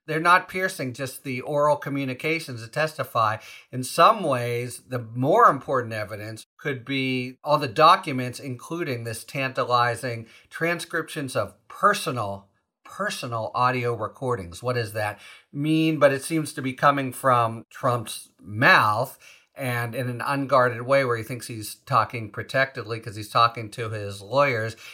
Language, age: English, 50-69